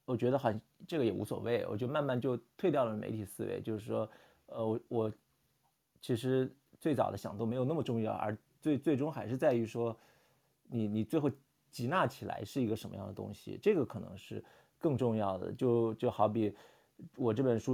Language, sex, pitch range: Chinese, male, 110-150 Hz